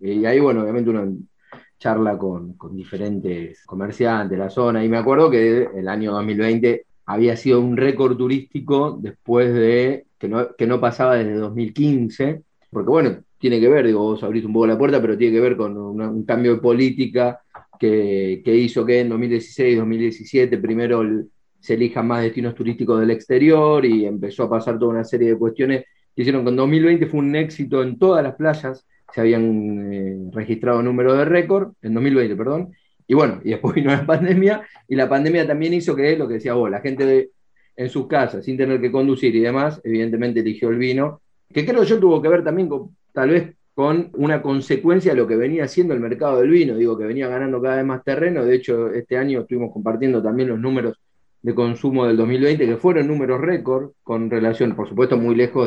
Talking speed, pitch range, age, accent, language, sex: 205 wpm, 115-135 Hz, 30-49, Argentinian, Spanish, male